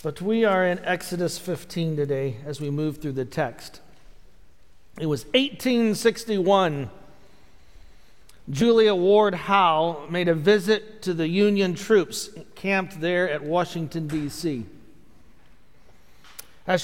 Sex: male